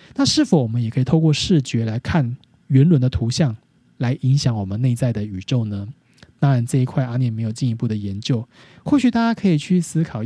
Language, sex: Chinese, male